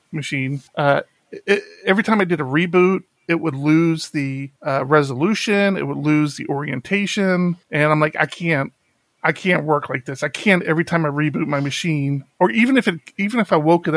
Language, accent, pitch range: English, American, 145-180 Hz